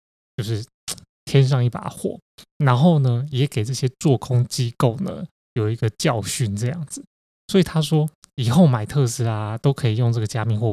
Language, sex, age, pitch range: Chinese, male, 20-39, 115-155 Hz